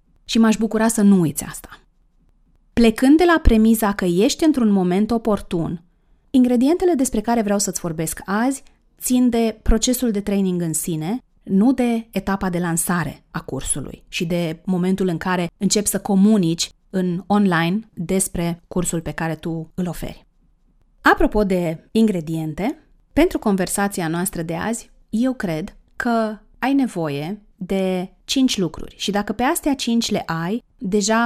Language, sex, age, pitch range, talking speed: Romanian, female, 30-49, 170-225 Hz, 150 wpm